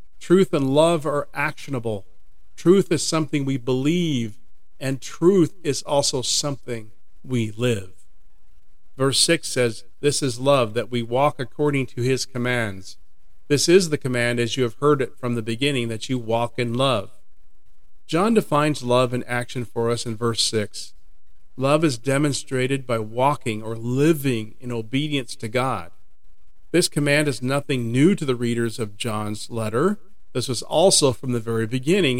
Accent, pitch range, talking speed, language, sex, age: American, 115-140 Hz, 160 wpm, English, male, 40-59